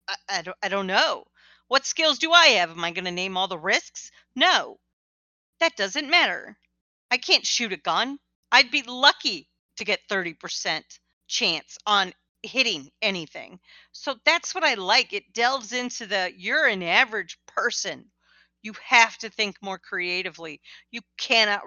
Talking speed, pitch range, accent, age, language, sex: 160 wpm, 175-235 Hz, American, 40-59, English, female